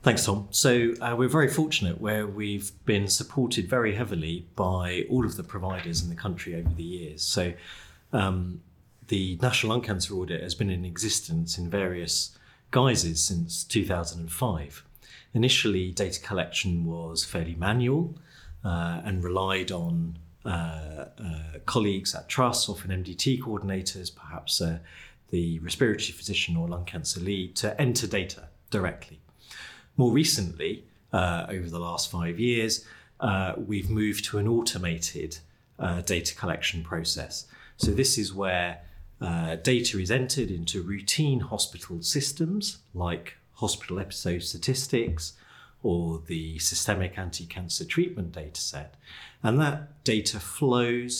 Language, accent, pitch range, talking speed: English, British, 85-110 Hz, 135 wpm